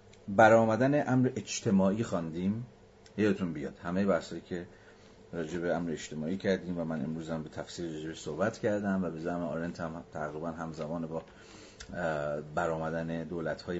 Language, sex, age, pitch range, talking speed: Persian, male, 40-59, 85-105 Hz, 145 wpm